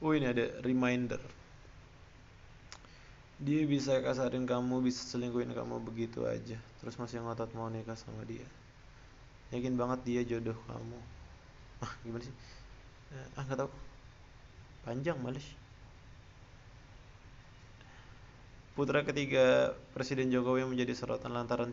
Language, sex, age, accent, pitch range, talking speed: Indonesian, male, 20-39, native, 115-130 Hz, 115 wpm